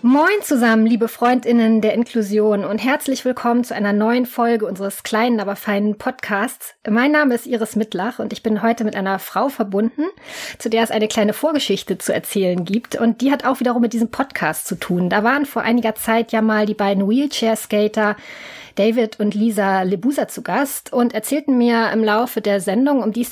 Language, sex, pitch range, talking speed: German, female, 210-255 Hz, 195 wpm